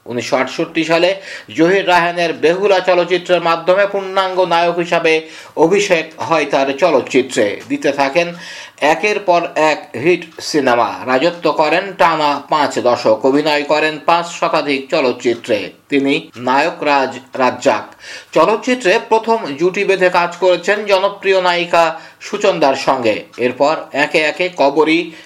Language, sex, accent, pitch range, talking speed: Bengali, male, native, 155-180 Hz, 65 wpm